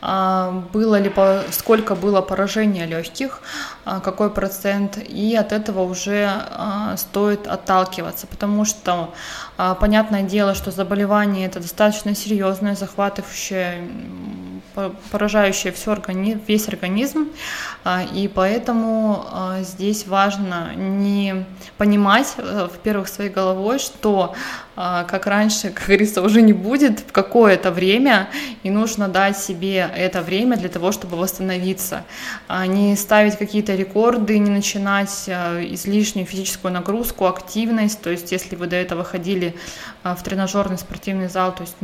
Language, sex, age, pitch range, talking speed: Russian, female, 20-39, 185-210 Hz, 115 wpm